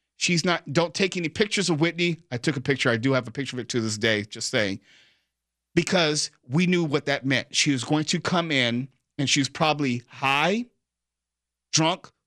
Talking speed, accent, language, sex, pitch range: 205 wpm, American, English, male, 125-155 Hz